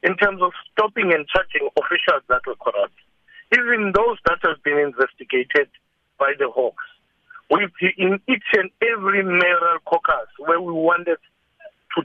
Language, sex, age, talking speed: English, male, 60-79, 145 wpm